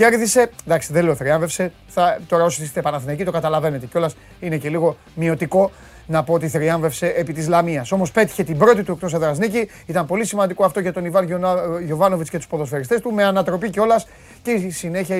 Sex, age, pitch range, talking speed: male, 30-49, 165-215 Hz, 185 wpm